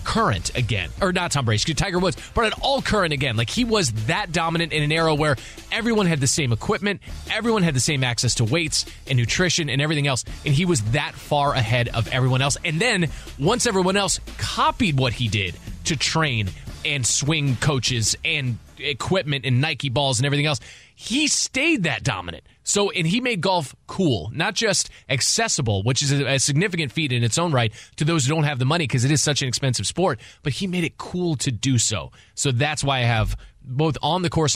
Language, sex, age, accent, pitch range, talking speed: English, male, 20-39, American, 125-170 Hz, 215 wpm